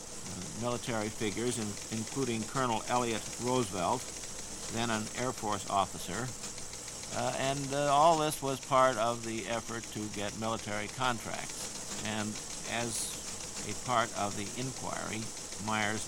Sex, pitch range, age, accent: male, 105-125 Hz, 60-79, American